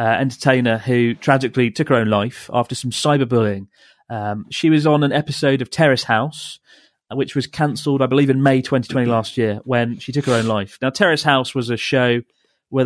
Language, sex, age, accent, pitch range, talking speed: English, male, 30-49, British, 115-140 Hz, 200 wpm